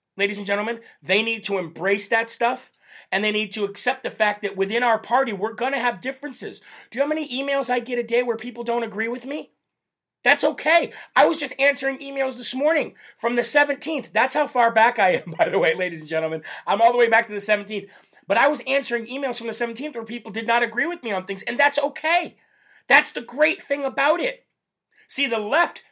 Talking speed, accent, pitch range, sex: 235 wpm, American, 205-265 Hz, male